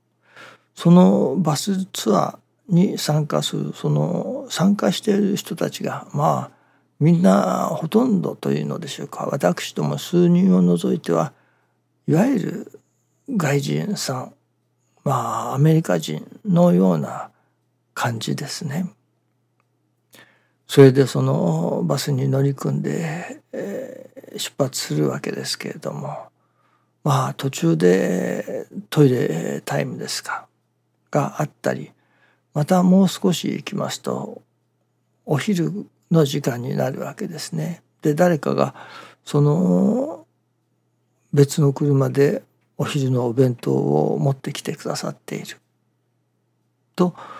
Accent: native